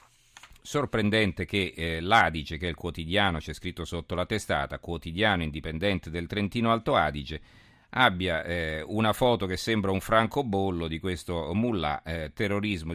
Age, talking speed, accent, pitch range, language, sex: 50-69, 150 wpm, native, 85-105 Hz, Italian, male